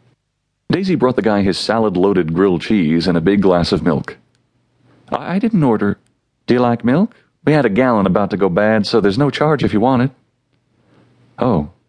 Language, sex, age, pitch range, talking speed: English, male, 40-59, 95-135 Hz, 190 wpm